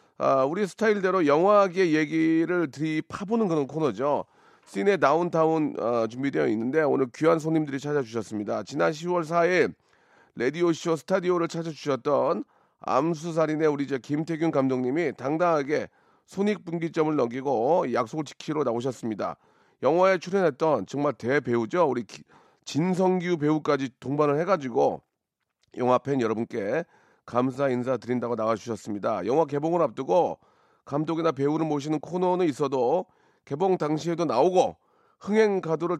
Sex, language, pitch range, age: male, Korean, 135-175 Hz, 40-59